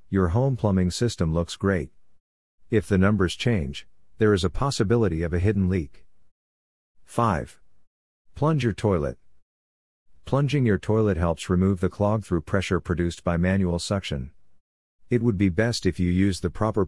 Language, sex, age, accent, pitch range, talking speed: English, male, 50-69, American, 85-105 Hz, 155 wpm